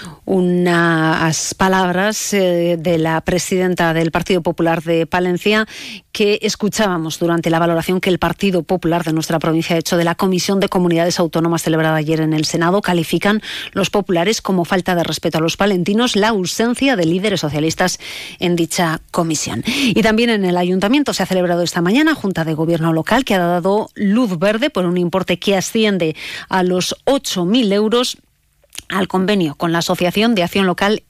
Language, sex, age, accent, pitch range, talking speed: Spanish, female, 40-59, Spanish, 170-210 Hz, 175 wpm